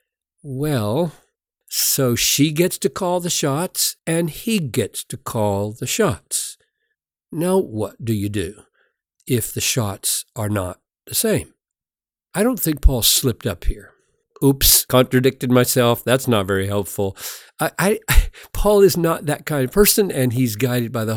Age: 60-79